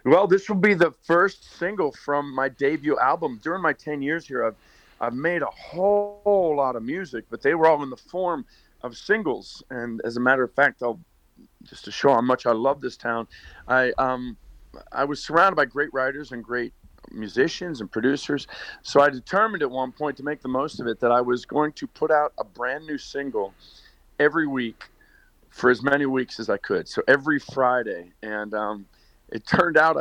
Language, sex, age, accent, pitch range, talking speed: English, male, 50-69, American, 115-145 Hz, 205 wpm